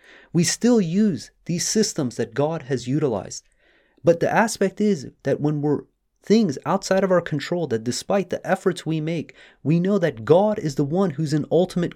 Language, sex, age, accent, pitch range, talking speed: English, male, 30-49, American, 140-180 Hz, 185 wpm